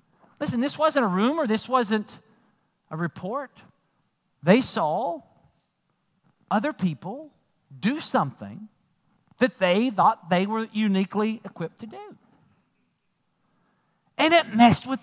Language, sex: English, male